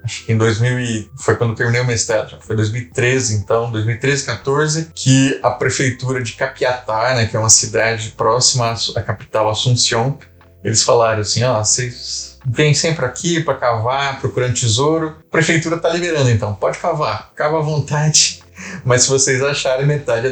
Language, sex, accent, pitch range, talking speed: Portuguese, male, Brazilian, 110-135 Hz, 170 wpm